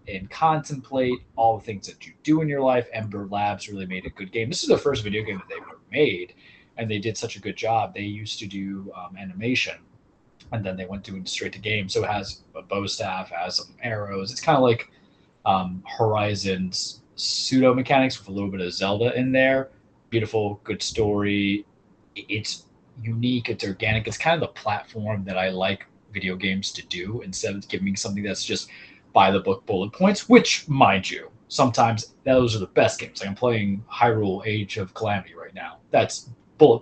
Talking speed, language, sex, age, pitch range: 200 wpm, English, male, 20-39, 95-125 Hz